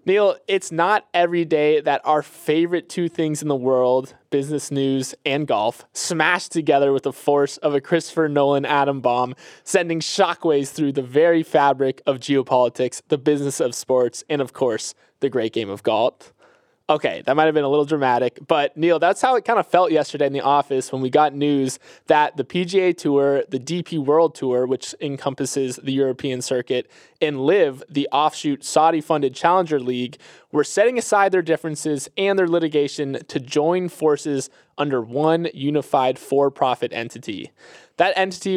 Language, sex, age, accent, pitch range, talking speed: English, male, 20-39, American, 135-165 Hz, 170 wpm